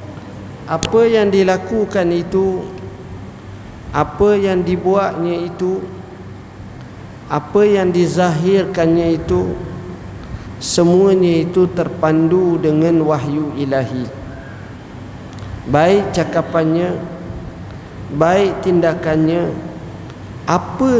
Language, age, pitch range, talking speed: English, 50-69, 150-185 Hz, 65 wpm